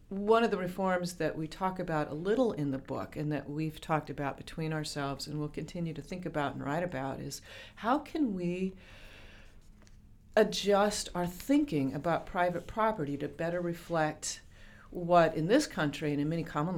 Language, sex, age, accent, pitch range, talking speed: English, female, 40-59, American, 145-185 Hz, 180 wpm